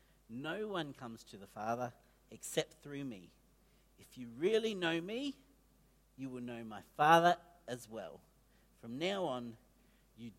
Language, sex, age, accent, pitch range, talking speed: English, male, 50-69, Australian, 125-185 Hz, 145 wpm